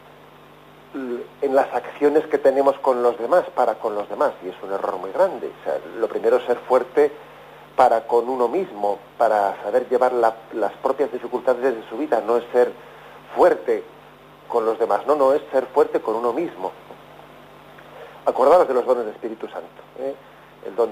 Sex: male